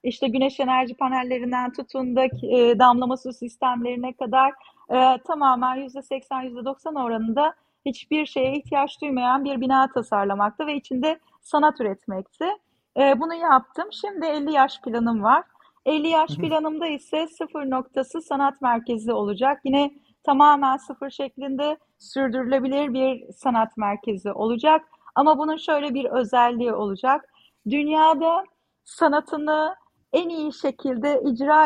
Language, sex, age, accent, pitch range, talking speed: Turkish, female, 30-49, native, 250-290 Hz, 120 wpm